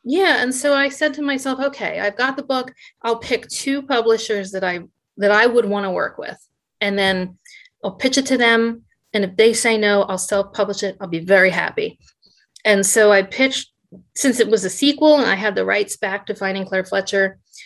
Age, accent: 30-49, American